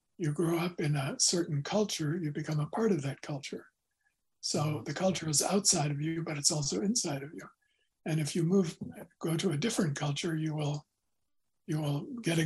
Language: English